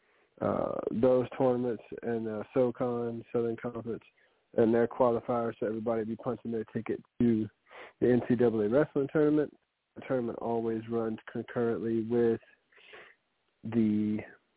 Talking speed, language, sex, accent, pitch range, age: 125 wpm, English, male, American, 110-125 Hz, 40-59